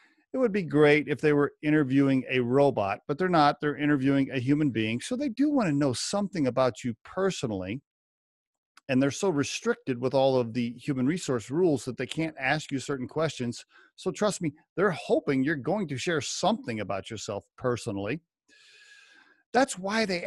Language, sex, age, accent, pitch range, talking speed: English, male, 40-59, American, 130-180 Hz, 185 wpm